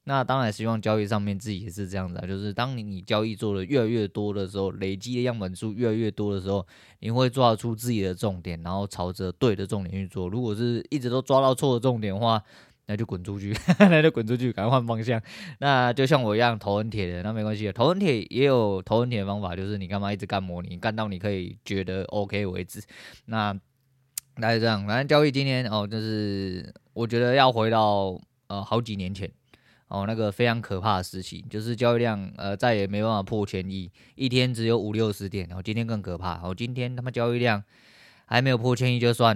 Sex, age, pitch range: male, 20-39, 100-125 Hz